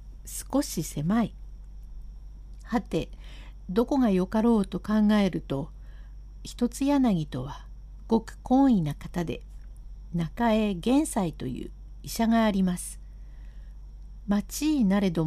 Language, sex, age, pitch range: Japanese, female, 60-79, 175-245 Hz